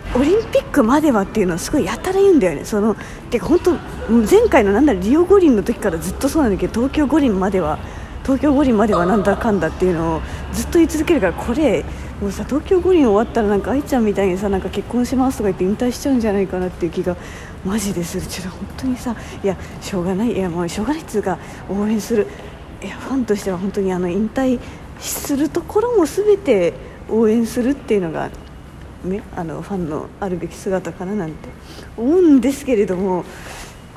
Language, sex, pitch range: Japanese, female, 190-285 Hz